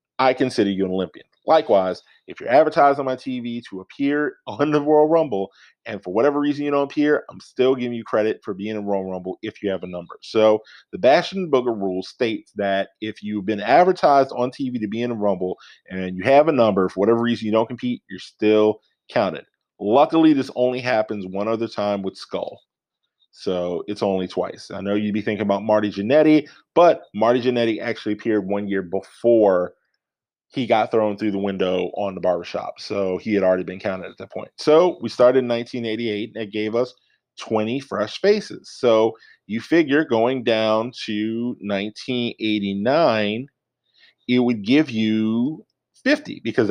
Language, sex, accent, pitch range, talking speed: English, male, American, 100-125 Hz, 190 wpm